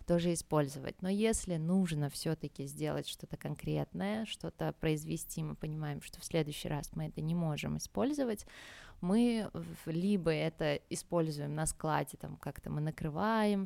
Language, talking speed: Russian, 140 wpm